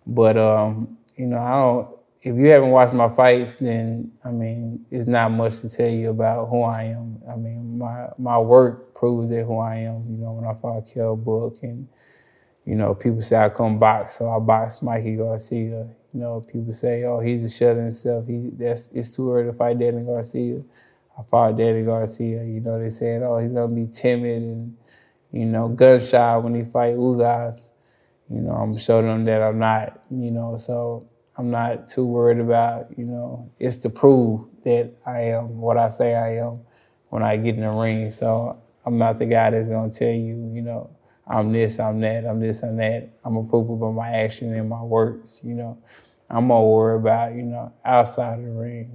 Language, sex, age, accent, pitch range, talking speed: English, male, 20-39, American, 115-120 Hz, 205 wpm